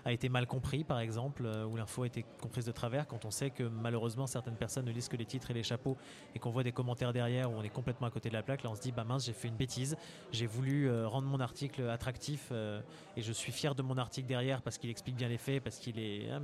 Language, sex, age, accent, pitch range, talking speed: French, male, 20-39, French, 115-135 Hz, 290 wpm